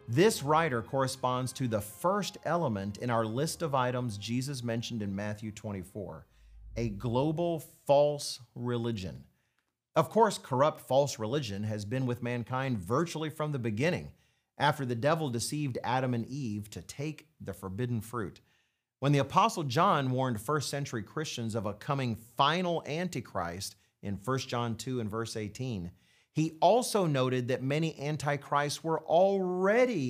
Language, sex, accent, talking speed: English, male, American, 150 wpm